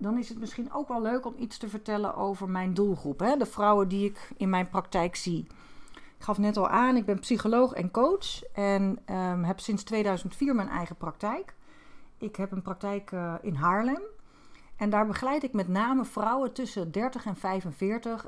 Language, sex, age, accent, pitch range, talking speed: Dutch, female, 40-59, Dutch, 190-230 Hz, 185 wpm